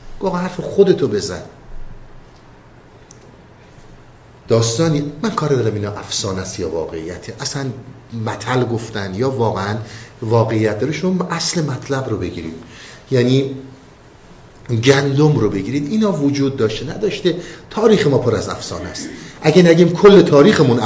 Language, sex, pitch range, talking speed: Persian, male, 115-150 Hz, 125 wpm